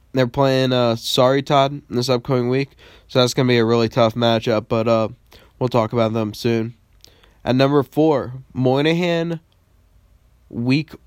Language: English